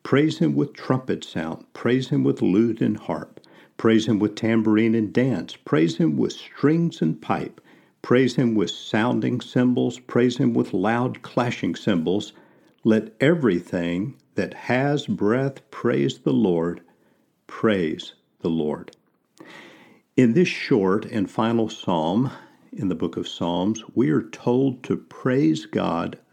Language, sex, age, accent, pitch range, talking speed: English, male, 50-69, American, 100-130 Hz, 140 wpm